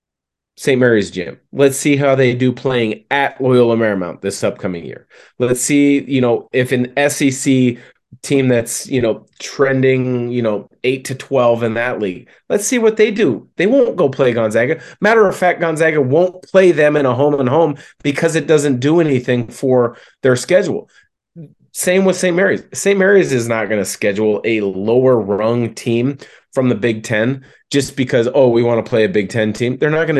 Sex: male